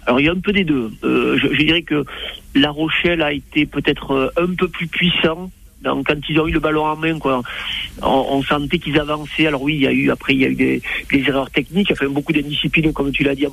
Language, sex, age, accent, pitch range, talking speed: French, male, 50-69, French, 150-175 Hz, 275 wpm